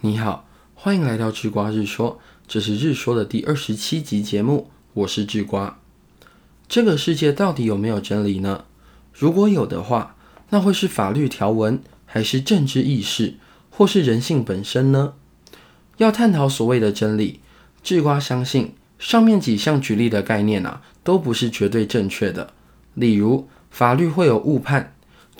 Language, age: Chinese, 20-39